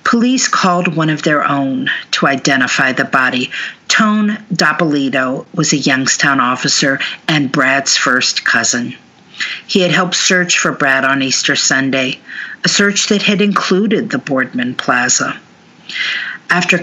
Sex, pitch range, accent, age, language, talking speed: female, 145-180 Hz, American, 50-69, English, 135 wpm